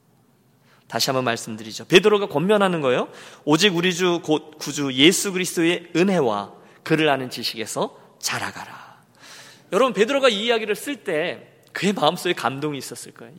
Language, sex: Korean, male